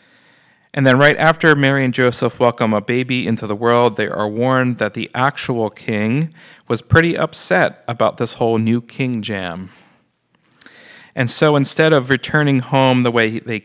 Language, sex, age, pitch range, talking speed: English, male, 40-59, 110-135 Hz, 165 wpm